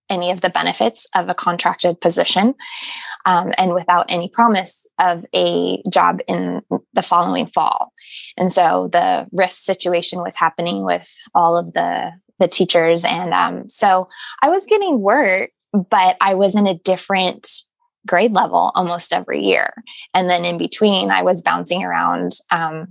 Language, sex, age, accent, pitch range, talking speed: English, female, 20-39, American, 170-215 Hz, 155 wpm